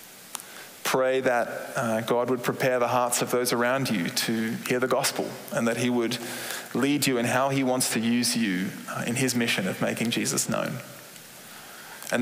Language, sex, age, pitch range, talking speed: English, male, 20-39, 120-130 Hz, 185 wpm